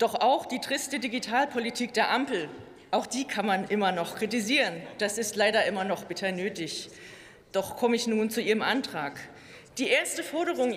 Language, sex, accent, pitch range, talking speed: German, female, German, 205-265 Hz, 175 wpm